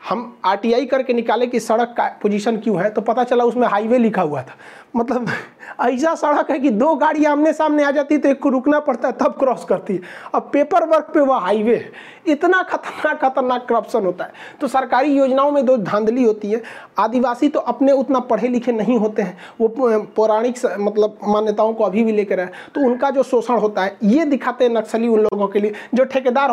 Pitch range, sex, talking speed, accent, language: 220-270 Hz, male, 210 wpm, native, Hindi